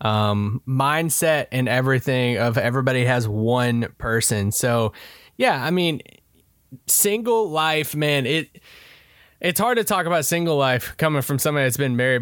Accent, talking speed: American, 145 wpm